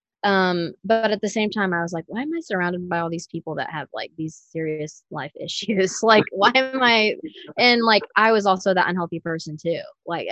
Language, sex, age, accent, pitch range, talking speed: English, female, 20-39, American, 160-195 Hz, 220 wpm